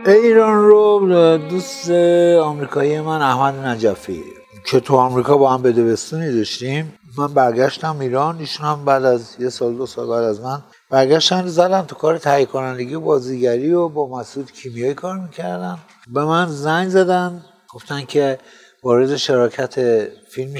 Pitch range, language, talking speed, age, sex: 115-150 Hz, Persian, 150 wpm, 60-79, male